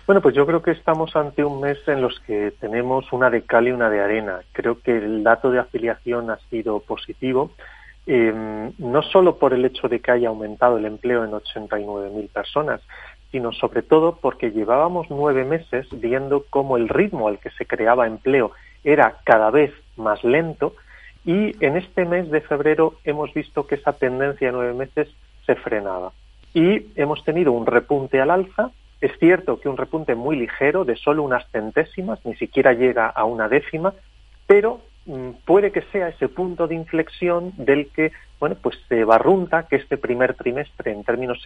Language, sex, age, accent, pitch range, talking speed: Spanish, male, 40-59, Spanish, 115-155 Hz, 180 wpm